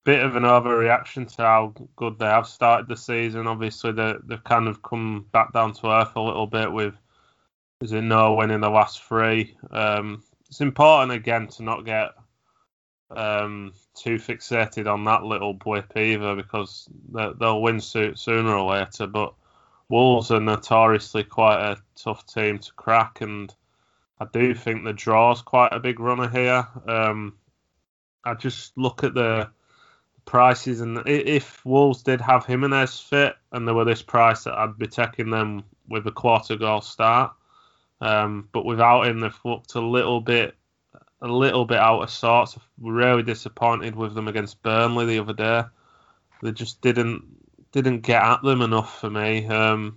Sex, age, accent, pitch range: male, 20-39, British, 110-120 Hz